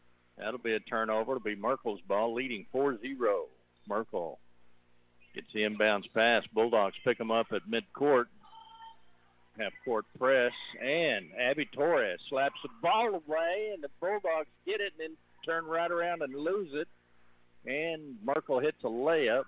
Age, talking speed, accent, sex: 50-69, 150 wpm, American, male